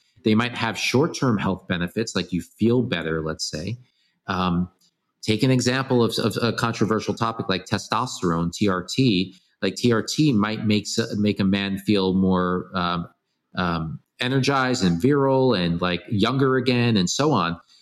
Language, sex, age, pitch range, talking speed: English, male, 30-49, 95-120 Hz, 150 wpm